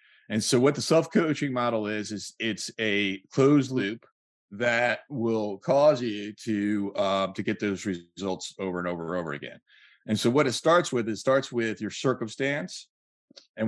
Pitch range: 100-120 Hz